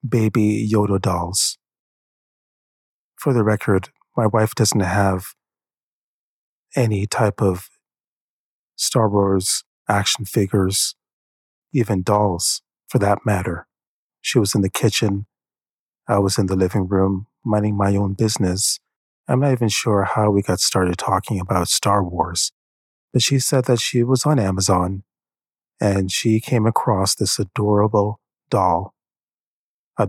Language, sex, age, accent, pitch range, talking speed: English, male, 30-49, American, 95-120 Hz, 130 wpm